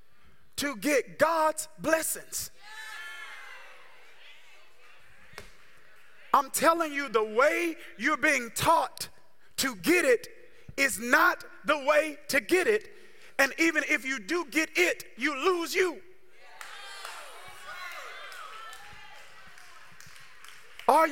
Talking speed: 95 wpm